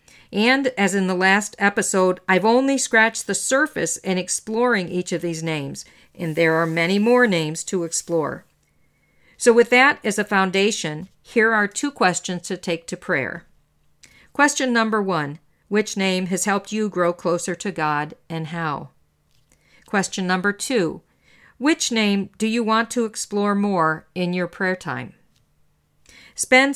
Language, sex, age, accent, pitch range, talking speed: English, female, 50-69, American, 175-225 Hz, 155 wpm